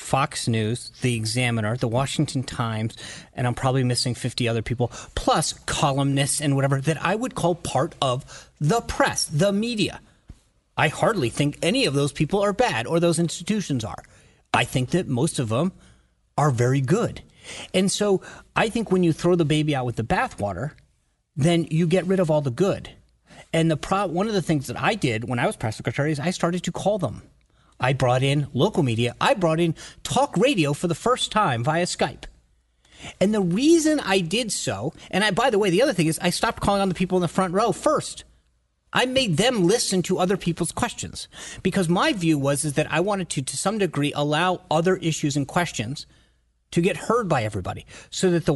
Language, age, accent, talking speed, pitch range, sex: English, 30-49, American, 205 wpm, 125-175 Hz, male